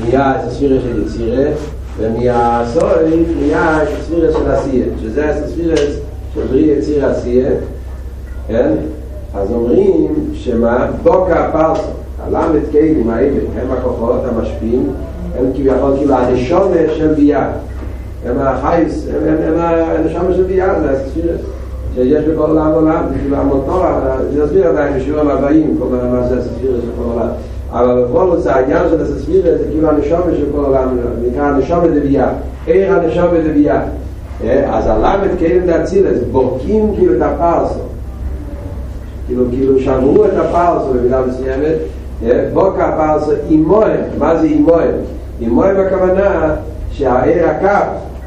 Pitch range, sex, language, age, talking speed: 120-165 Hz, male, Hebrew, 60-79, 65 wpm